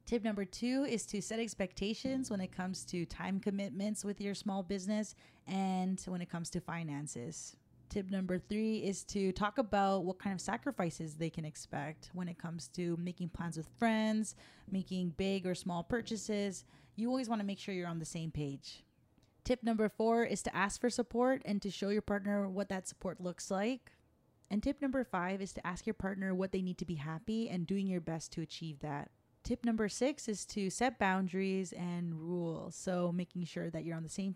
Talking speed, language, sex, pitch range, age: 205 wpm, English, female, 170-210 Hz, 20-39